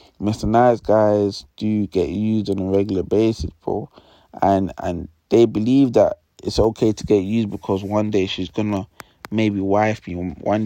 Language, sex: English, male